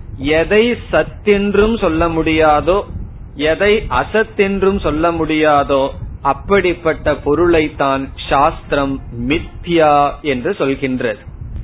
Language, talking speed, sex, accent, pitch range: Tamil, 80 wpm, male, native, 135-185 Hz